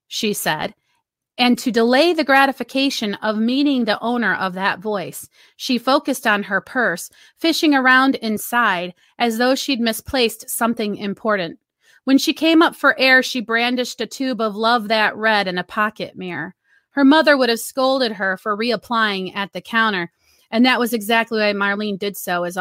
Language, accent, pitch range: English, American, 205-260 Hz